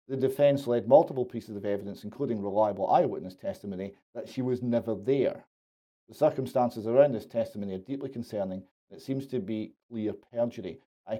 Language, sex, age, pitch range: English, male, 40-59, 110-135 Hz